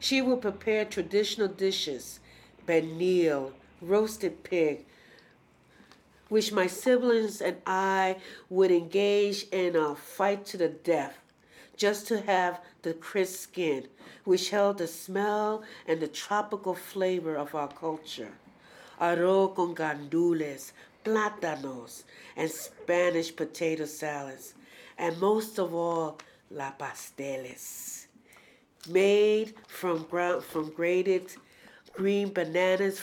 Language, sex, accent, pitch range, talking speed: English, female, American, 155-195 Hz, 105 wpm